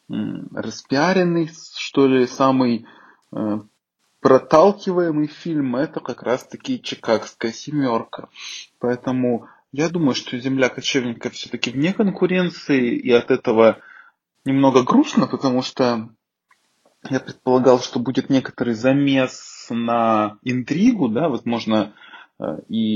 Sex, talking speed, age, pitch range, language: male, 100 wpm, 20-39, 115-150 Hz, Ukrainian